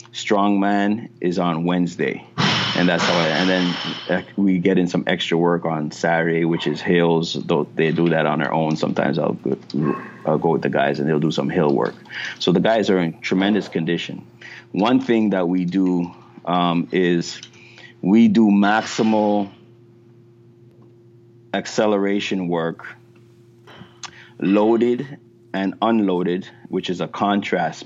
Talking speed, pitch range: 145 wpm, 85-115 Hz